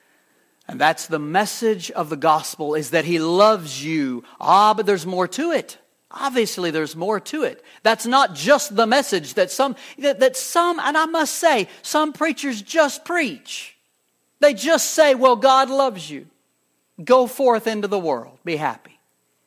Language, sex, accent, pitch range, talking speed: English, male, American, 180-275 Hz, 170 wpm